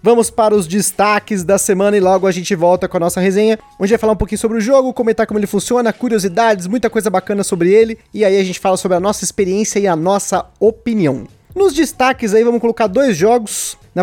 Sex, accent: male, Brazilian